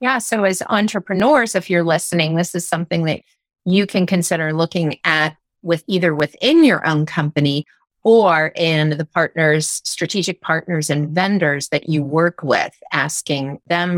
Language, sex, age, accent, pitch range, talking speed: English, female, 30-49, American, 150-185 Hz, 155 wpm